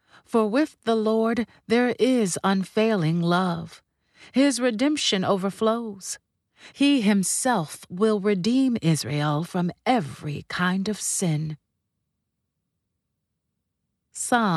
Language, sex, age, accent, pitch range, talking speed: English, female, 40-59, American, 170-230 Hz, 90 wpm